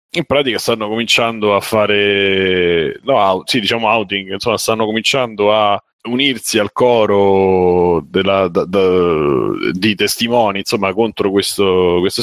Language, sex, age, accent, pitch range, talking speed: Italian, male, 30-49, native, 95-115 Hz, 130 wpm